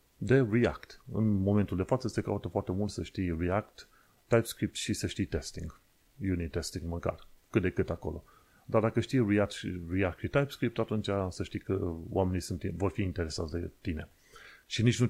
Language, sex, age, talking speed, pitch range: Romanian, male, 30-49, 185 wpm, 90-115 Hz